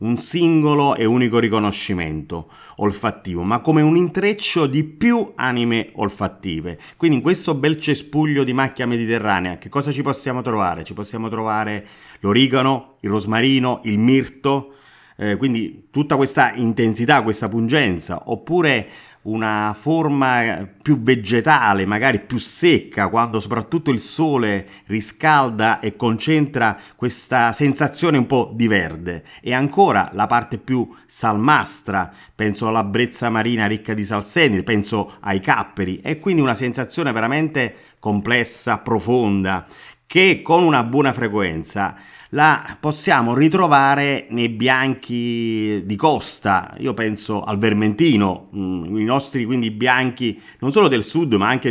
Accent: native